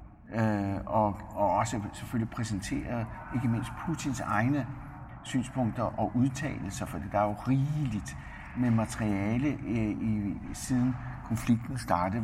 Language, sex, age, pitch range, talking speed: Danish, male, 60-79, 100-125 Hz, 125 wpm